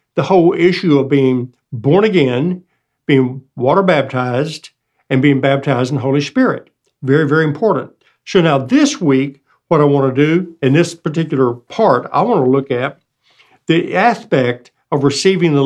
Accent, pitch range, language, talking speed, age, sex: American, 135-180 Hz, English, 165 wpm, 60-79, male